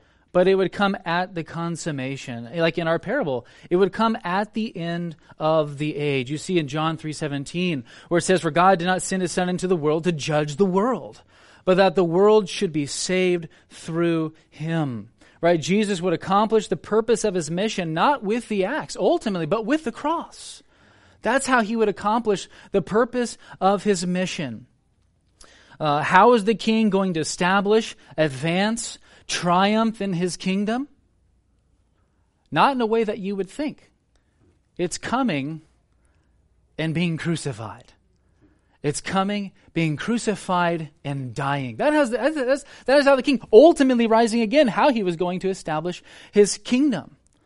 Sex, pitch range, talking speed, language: male, 155-210 Hz, 165 wpm, English